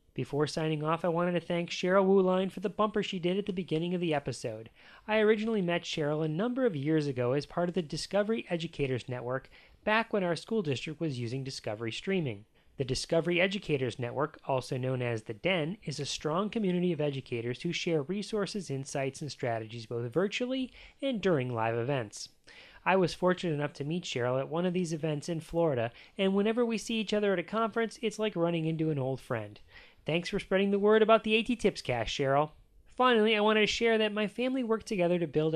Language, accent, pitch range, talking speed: English, American, 140-200 Hz, 210 wpm